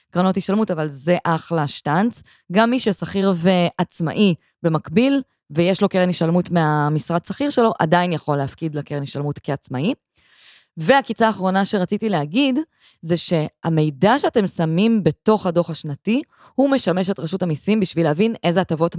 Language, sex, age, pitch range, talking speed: Hebrew, female, 20-39, 155-195 Hz, 140 wpm